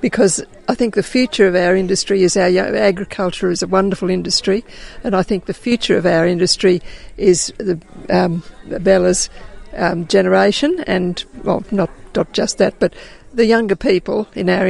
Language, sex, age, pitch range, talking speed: English, female, 50-69, 190-215 Hz, 165 wpm